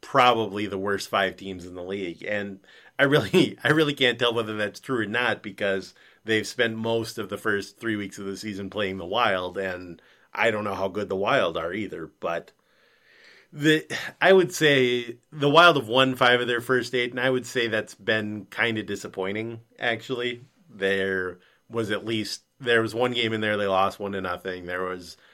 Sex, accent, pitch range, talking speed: male, American, 95-120 Hz, 200 wpm